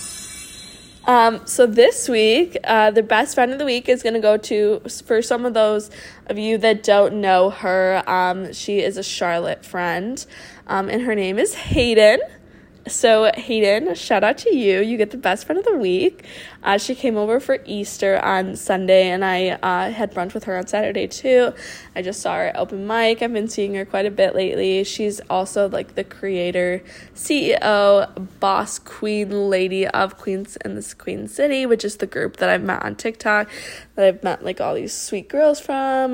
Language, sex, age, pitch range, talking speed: English, female, 20-39, 200-255 Hz, 195 wpm